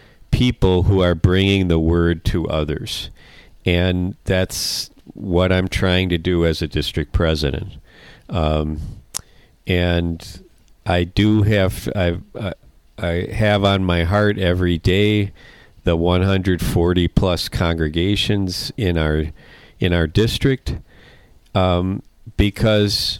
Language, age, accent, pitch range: English, 50-69, American, 85-100 Hz